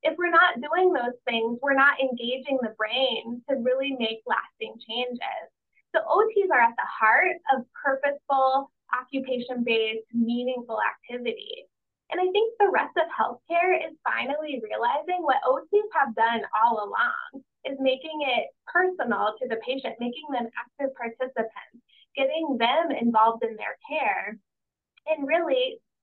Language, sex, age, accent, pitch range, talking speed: English, female, 10-29, American, 230-305 Hz, 145 wpm